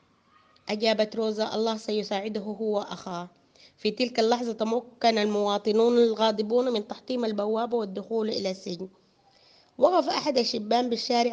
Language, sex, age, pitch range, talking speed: Arabic, female, 30-49, 200-235 Hz, 115 wpm